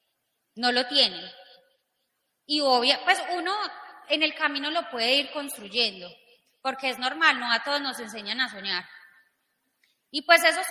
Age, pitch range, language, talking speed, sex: 20-39, 245-330 Hz, Spanish, 150 wpm, female